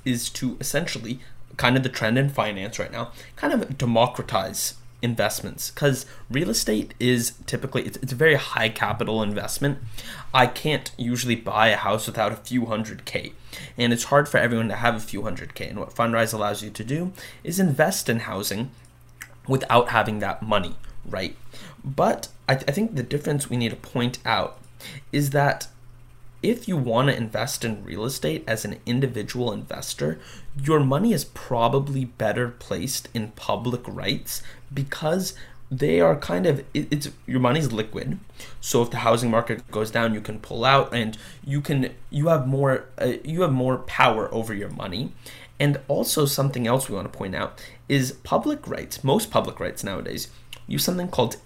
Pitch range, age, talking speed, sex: 115-135 Hz, 20-39, 175 wpm, male